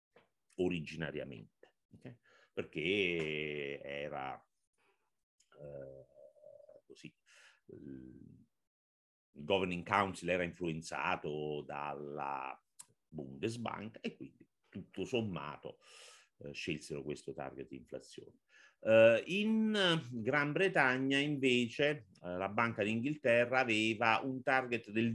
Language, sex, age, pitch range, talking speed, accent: Italian, male, 50-69, 80-120 Hz, 85 wpm, native